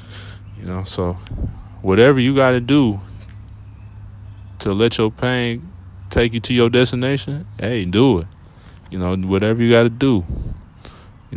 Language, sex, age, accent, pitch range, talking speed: English, male, 20-39, American, 95-120 Hz, 150 wpm